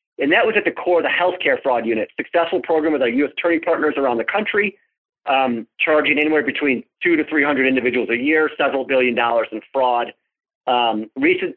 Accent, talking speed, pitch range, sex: American, 195 wpm, 130-180 Hz, male